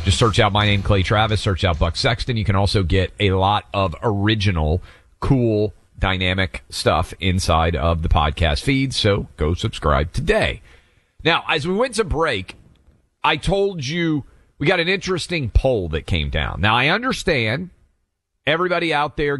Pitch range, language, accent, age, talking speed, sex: 90-135 Hz, English, American, 40-59, 165 wpm, male